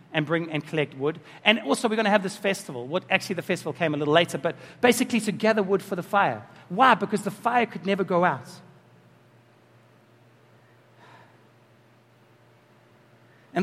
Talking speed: 165 wpm